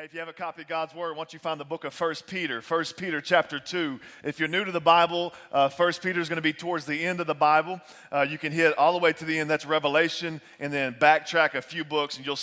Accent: American